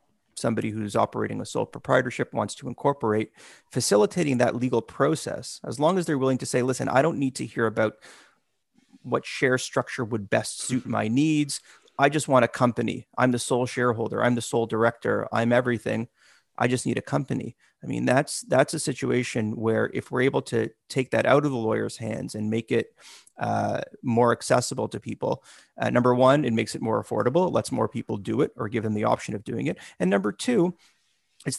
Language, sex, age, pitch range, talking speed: English, male, 30-49, 115-135 Hz, 205 wpm